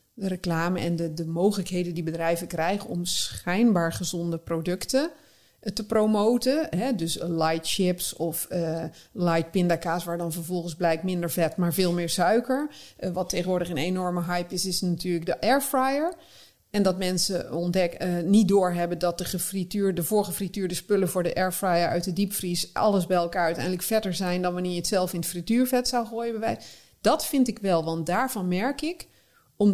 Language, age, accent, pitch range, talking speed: Dutch, 40-59, Dutch, 175-220 Hz, 175 wpm